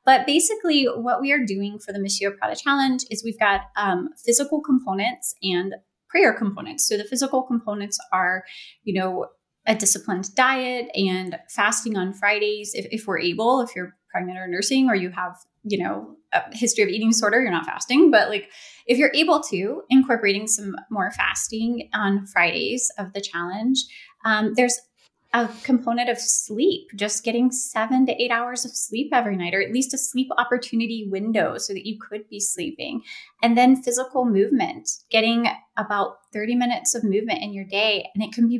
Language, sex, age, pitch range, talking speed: English, female, 20-39, 200-250 Hz, 180 wpm